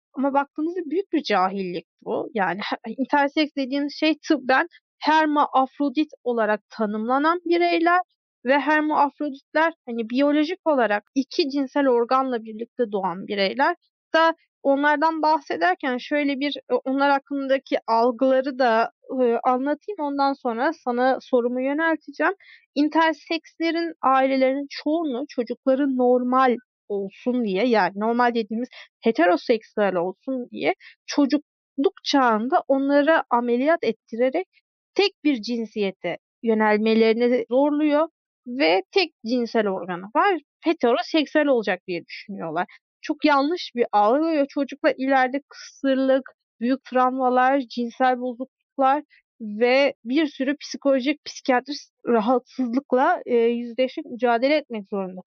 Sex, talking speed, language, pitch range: female, 105 wpm, Turkish, 240-305 Hz